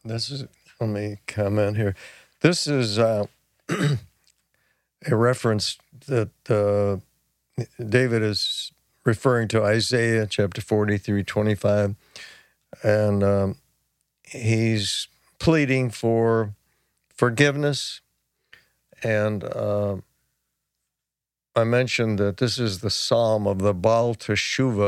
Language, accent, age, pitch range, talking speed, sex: English, American, 60-79, 105-130 Hz, 105 wpm, male